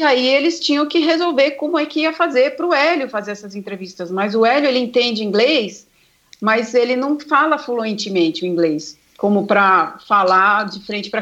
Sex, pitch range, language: female, 200-260 Hz, Portuguese